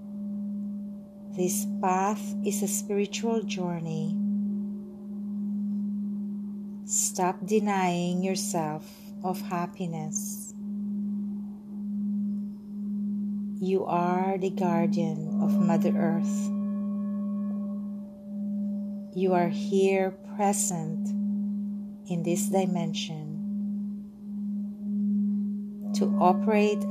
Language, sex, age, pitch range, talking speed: English, female, 40-59, 200-205 Hz, 60 wpm